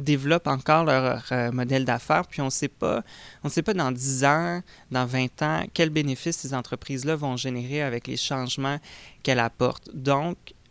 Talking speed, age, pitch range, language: 160 wpm, 20-39, 125-145 Hz, French